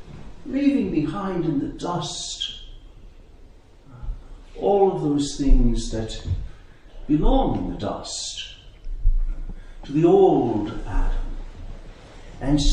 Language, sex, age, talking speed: English, male, 60-79, 90 wpm